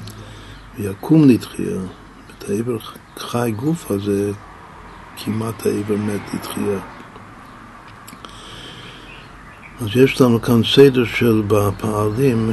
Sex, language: male, Hebrew